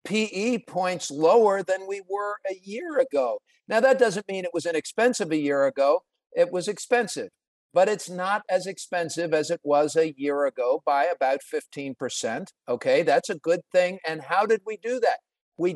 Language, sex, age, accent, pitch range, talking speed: English, male, 50-69, American, 160-215 Hz, 185 wpm